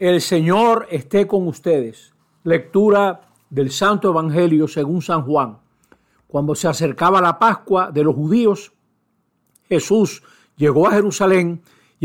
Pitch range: 155-195 Hz